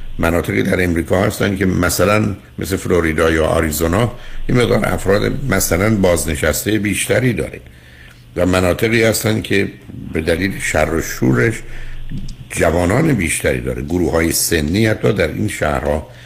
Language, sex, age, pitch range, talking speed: Persian, male, 60-79, 75-110 Hz, 125 wpm